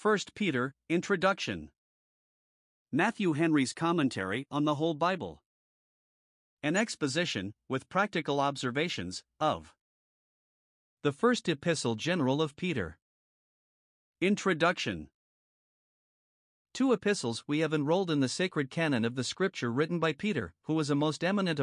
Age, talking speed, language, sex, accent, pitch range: 50-69, 120 wpm, English, male, American, 130-170 Hz